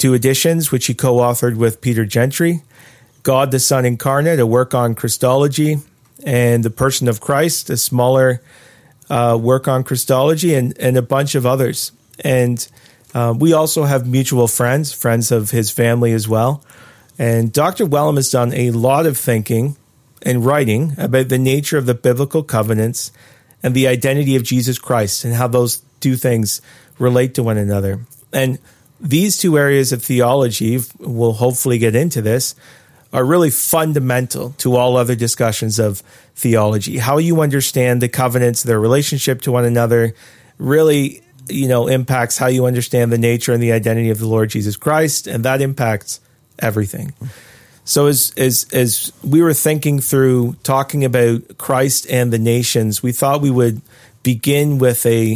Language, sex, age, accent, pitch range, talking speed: English, male, 40-59, American, 120-140 Hz, 165 wpm